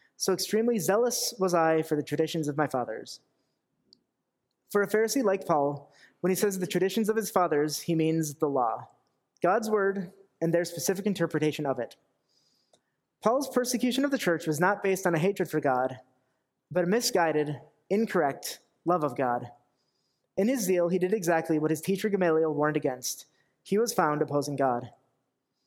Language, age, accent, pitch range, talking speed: English, 30-49, American, 150-195 Hz, 170 wpm